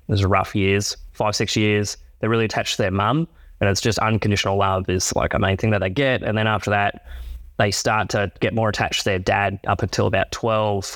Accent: Australian